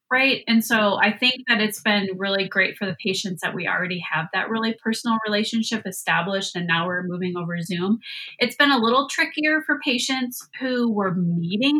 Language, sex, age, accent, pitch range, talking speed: English, female, 30-49, American, 195-255 Hz, 195 wpm